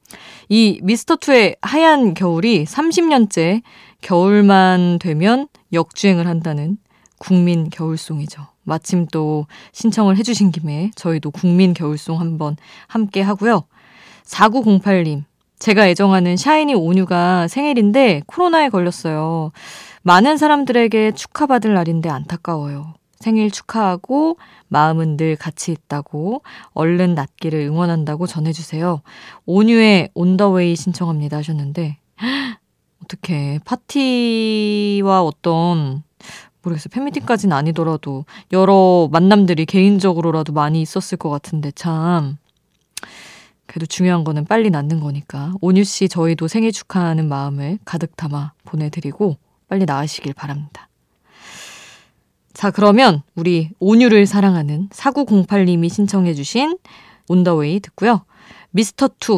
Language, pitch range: Korean, 160-215 Hz